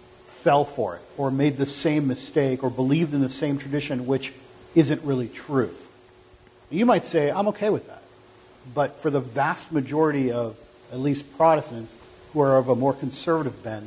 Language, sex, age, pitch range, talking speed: English, male, 50-69, 120-150 Hz, 175 wpm